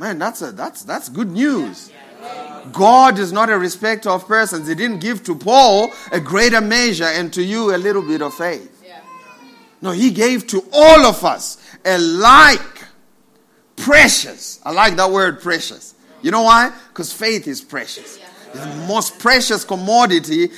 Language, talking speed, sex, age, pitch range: English, 165 wpm, male, 50-69, 165-230 Hz